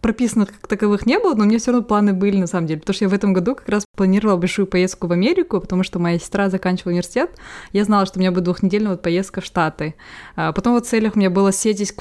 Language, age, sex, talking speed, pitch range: Russian, 20-39, female, 275 wpm, 175-205 Hz